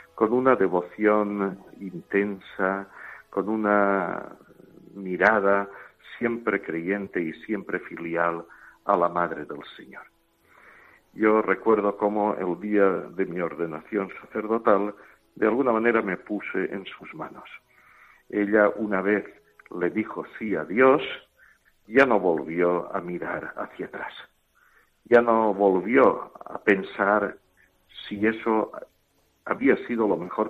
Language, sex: Spanish, male